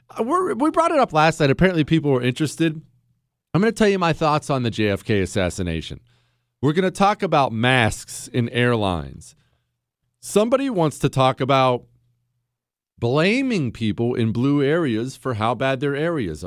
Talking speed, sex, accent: 165 wpm, male, American